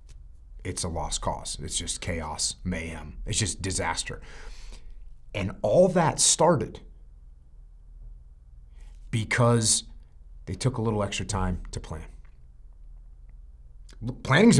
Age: 30-49